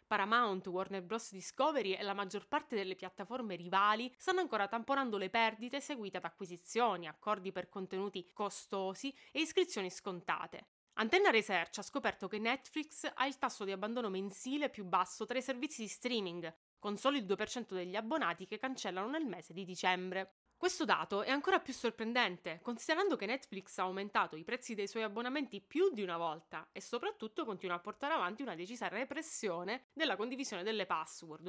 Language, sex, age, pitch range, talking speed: Italian, female, 20-39, 190-265 Hz, 170 wpm